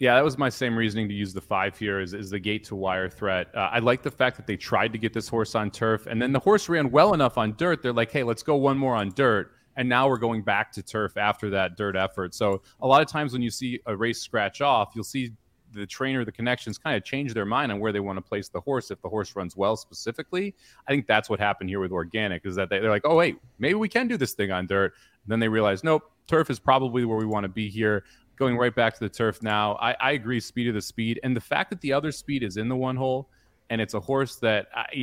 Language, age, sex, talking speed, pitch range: English, 30-49, male, 285 wpm, 105-130 Hz